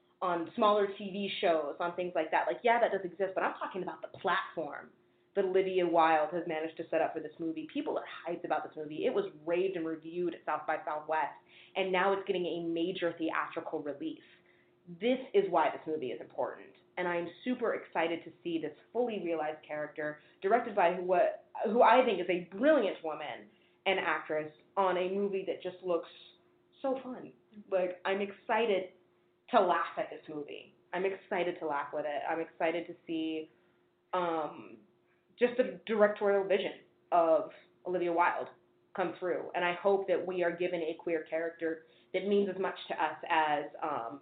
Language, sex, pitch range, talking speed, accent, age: English, female, 160-195 Hz, 185 wpm, American, 20-39